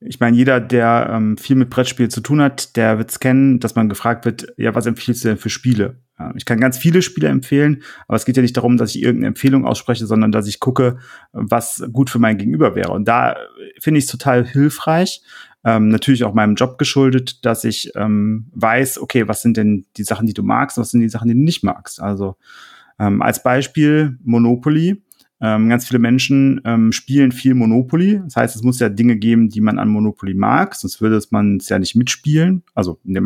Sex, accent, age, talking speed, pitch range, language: male, German, 30-49, 225 wpm, 110-135 Hz, German